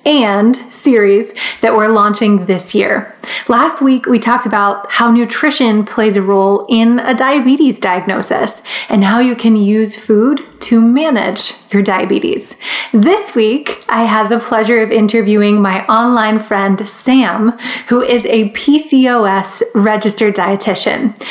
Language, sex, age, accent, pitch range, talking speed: English, female, 20-39, American, 210-250 Hz, 140 wpm